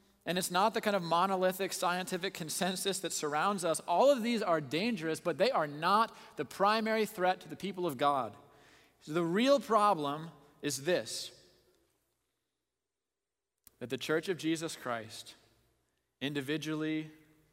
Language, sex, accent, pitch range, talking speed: English, male, American, 130-185 Hz, 140 wpm